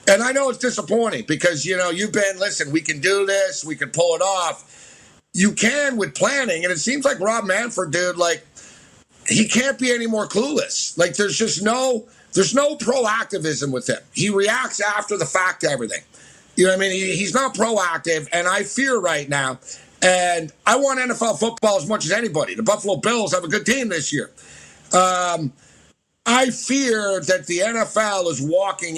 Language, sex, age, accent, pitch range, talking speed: English, male, 50-69, American, 160-215 Hz, 195 wpm